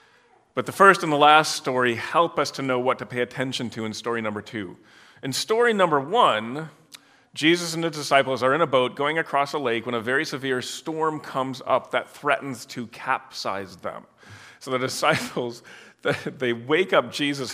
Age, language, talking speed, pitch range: 40-59, English, 190 wpm, 125-160 Hz